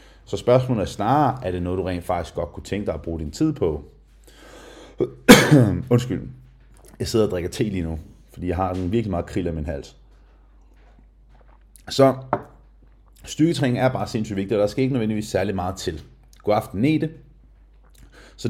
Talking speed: 175 wpm